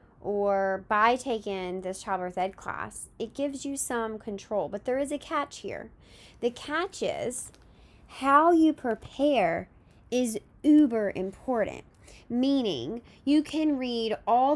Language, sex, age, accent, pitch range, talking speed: English, female, 10-29, American, 190-240 Hz, 130 wpm